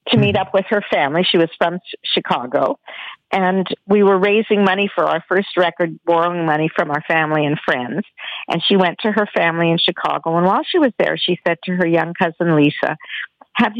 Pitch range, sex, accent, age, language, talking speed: 170-225 Hz, female, American, 50-69, English, 205 wpm